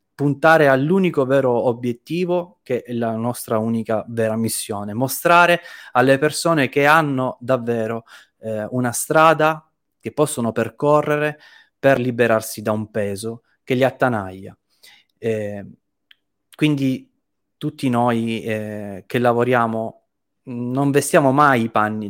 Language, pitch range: Italian, 105-135 Hz